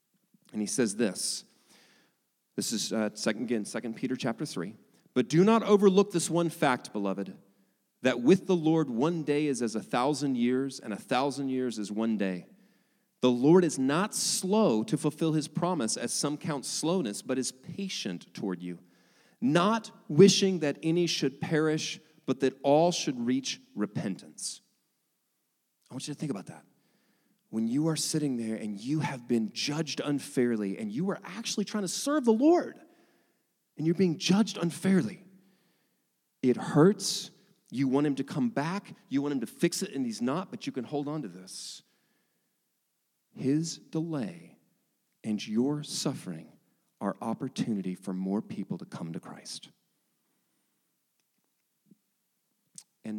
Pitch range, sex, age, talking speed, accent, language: 125-185 Hz, male, 40-59, 160 wpm, American, English